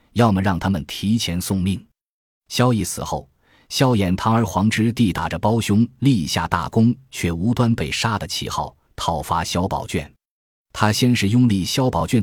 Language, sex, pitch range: Chinese, male, 85-115 Hz